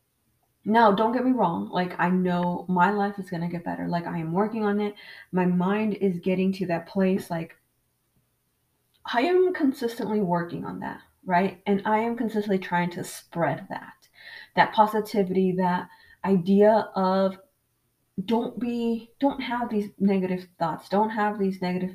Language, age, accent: English, 20-39, American